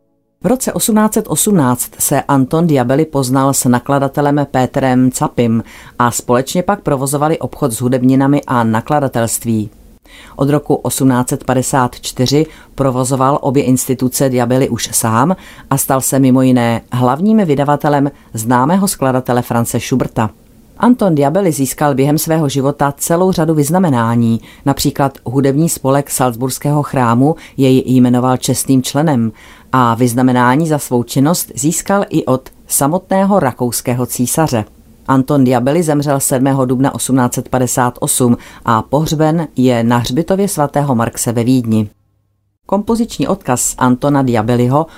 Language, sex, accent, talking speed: Czech, female, native, 115 wpm